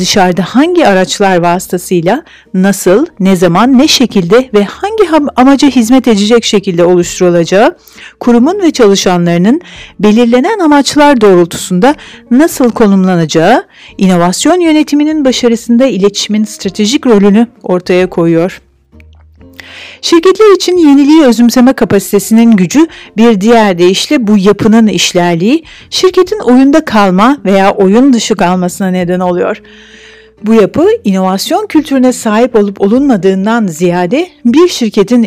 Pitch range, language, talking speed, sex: 185-265 Hz, Turkish, 105 wpm, female